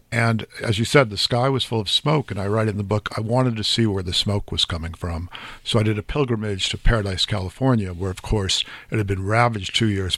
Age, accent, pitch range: 50-69, American, 100-120 Hz